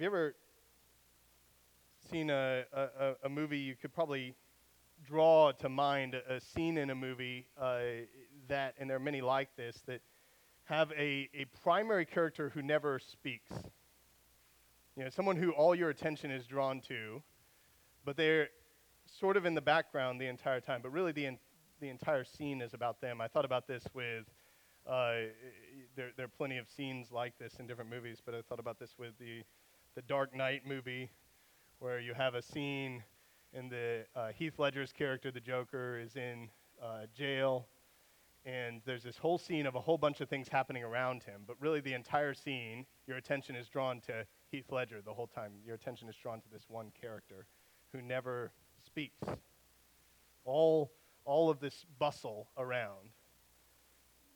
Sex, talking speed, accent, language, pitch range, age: male, 170 wpm, American, English, 115-140 Hz, 30-49